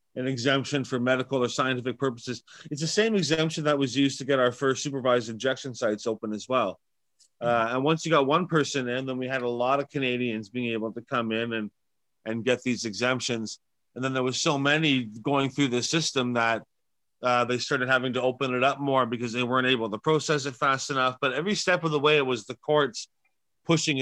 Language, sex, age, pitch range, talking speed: English, male, 30-49, 120-145 Hz, 220 wpm